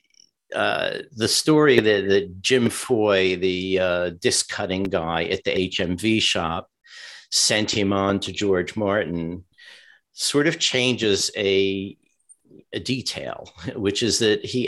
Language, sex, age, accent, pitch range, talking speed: English, male, 50-69, American, 95-120 Hz, 130 wpm